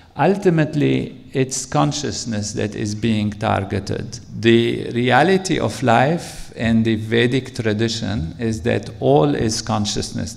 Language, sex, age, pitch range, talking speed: English, male, 50-69, 110-130 Hz, 115 wpm